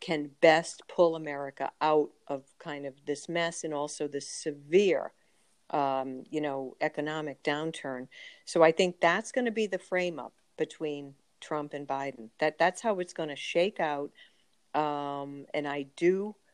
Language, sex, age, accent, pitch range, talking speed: English, female, 50-69, American, 150-175 Hz, 155 wpm